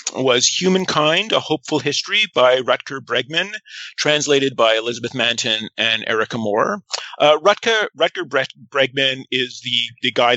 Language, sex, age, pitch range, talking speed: English, male, 40-59, 130-215 Hz, 135 wpm